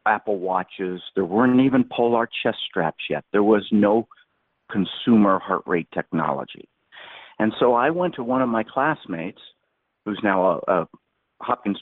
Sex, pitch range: male, 90-120 Hz